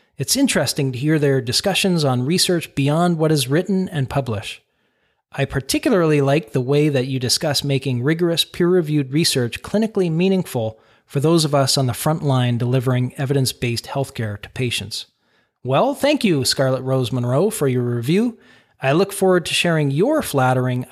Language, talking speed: English, 165 wpm